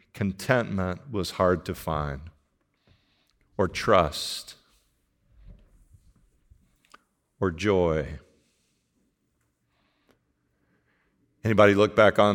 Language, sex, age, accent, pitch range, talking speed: English, male, 40-59, American, 90-115 Hz, 65 wpm